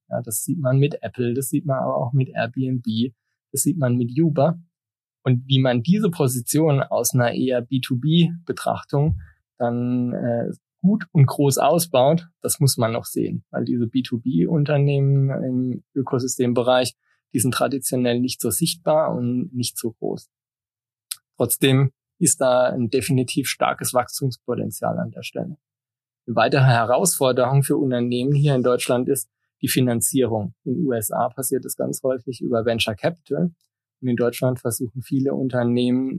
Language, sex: German, male